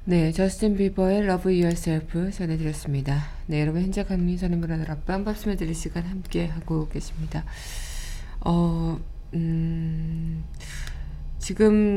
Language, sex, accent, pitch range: Korean, female, native, 150-190 Hz